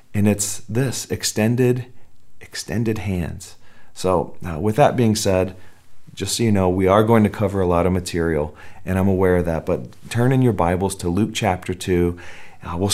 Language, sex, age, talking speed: English, male, 40-59, 190 wpm